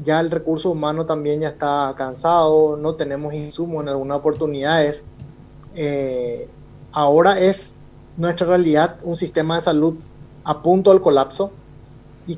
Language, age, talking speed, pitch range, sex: Spanish, 30-49, 135 wpm, 145-180 Hz, male